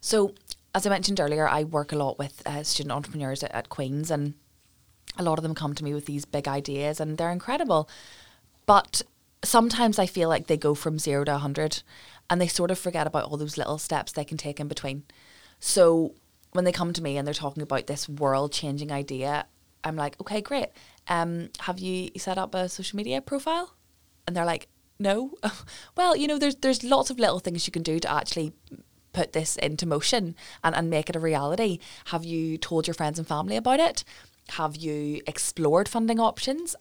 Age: 20-39